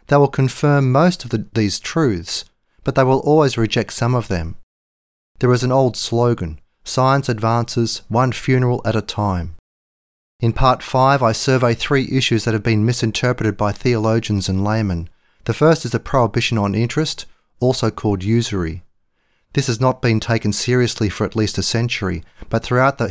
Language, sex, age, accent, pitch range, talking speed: English, male, 30-49, Australian, 100-125 Hz, 170 wpm